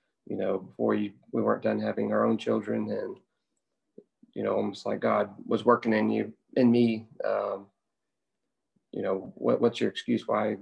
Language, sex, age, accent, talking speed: English, male, 30-49, American, 175 wpm